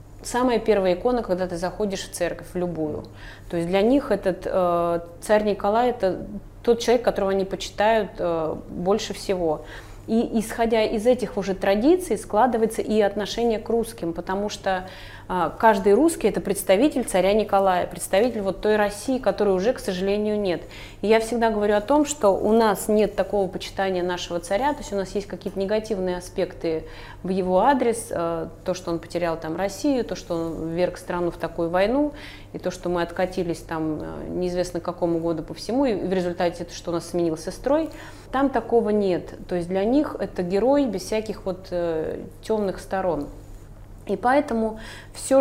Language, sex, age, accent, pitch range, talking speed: Russian, female, 30-49, native, 175-220 Hz, 170 wpm